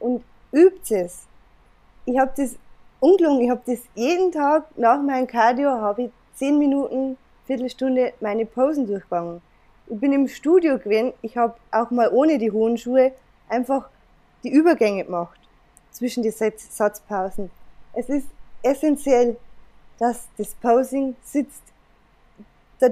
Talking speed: 135 wpm